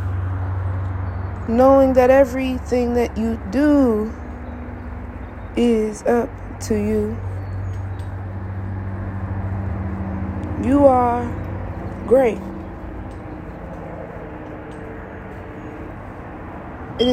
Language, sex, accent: English, female, American